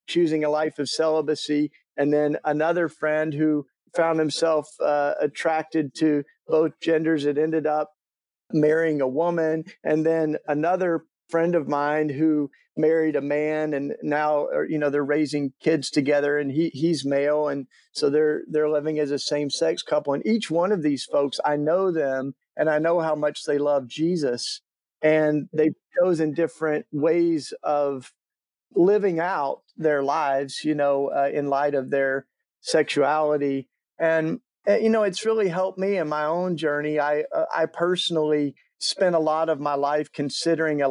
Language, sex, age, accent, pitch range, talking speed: English, male, 40-59, American, 145-160 Hz, 170 wpm